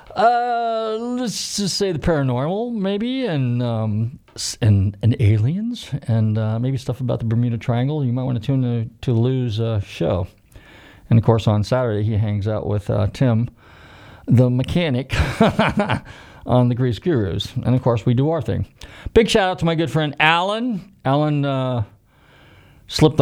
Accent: American